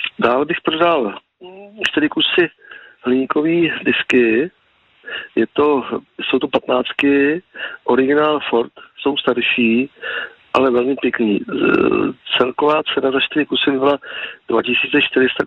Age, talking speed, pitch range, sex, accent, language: 50-69, 100 wpm, 125-150 Hz, male, native, Czech